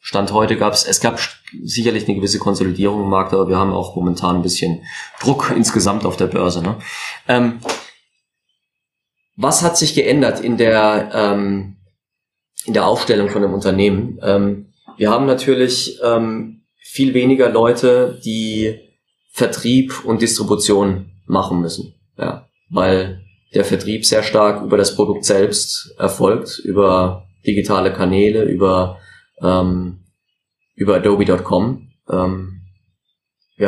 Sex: male